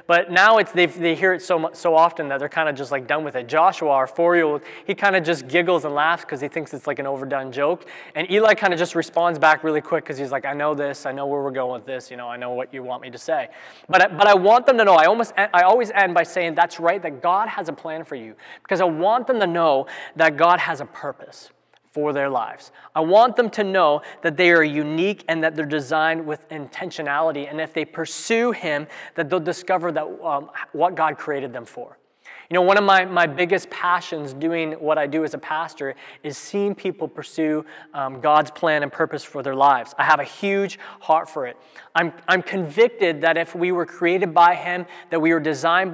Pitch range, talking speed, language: 150-180 Hz, 240 wpm, English